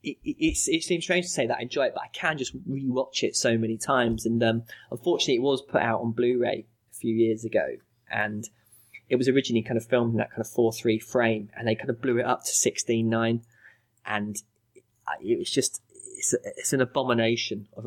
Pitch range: 110-120 Hz